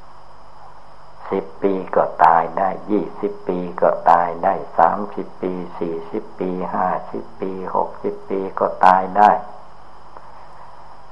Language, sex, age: Thai, male, 60-79